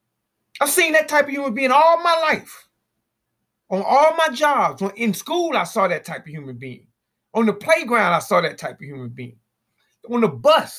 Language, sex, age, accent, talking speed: English, male, 30-49, American, 200 wpm